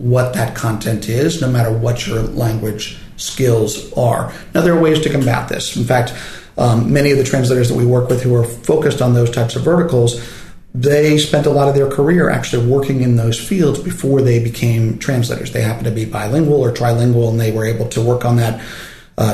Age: 40-59